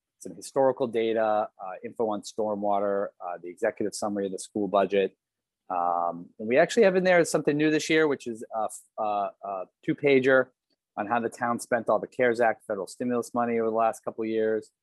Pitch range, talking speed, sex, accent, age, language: 100-125 Hz, 200 wpm, male, American, 30-49, English